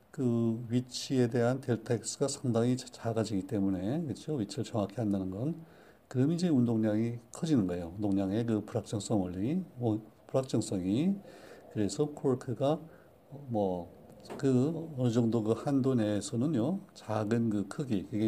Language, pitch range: Korean, 105-135 Hz